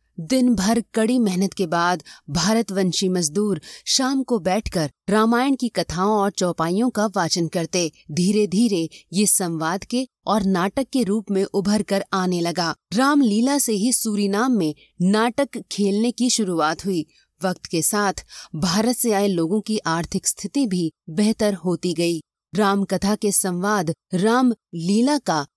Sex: female